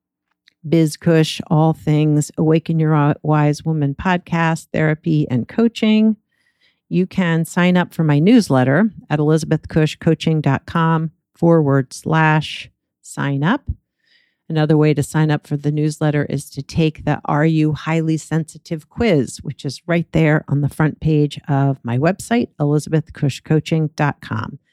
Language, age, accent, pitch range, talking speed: English, 50-69, American, 145-165 Hz, 130 wpm